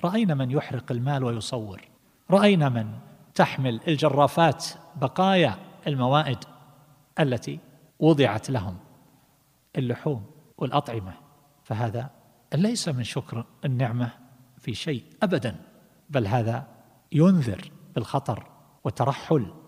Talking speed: 90 wpm